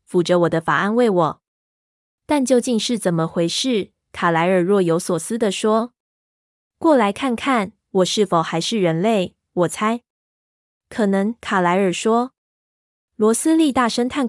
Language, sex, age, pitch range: Chinese, female, 20-39, 180-230 Hz